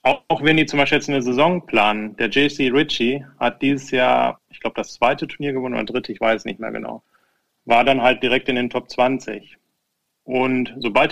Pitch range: 120-140 Hz